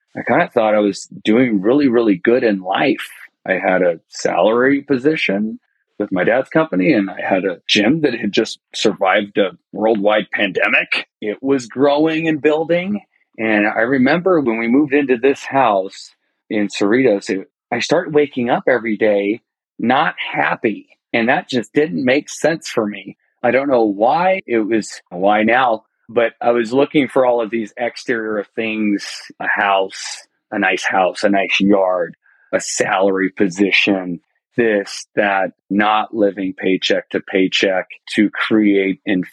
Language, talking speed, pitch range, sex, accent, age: English, 160 wpm, 100-125 Hz, male, American, 40-59